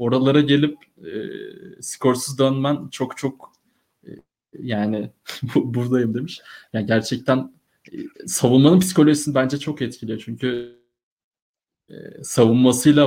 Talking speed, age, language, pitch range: 100 wpm, 20-39, Turkish, 120-150 Hz